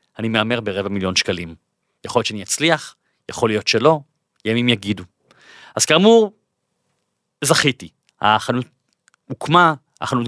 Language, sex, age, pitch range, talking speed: Hebrew, male, 30-49, 110-155 Hz, 115 wpm